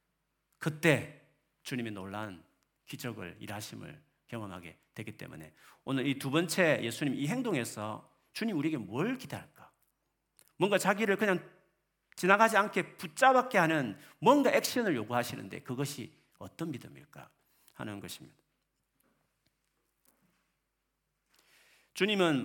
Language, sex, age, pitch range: Korean, male, 40-59, 120-180 Hz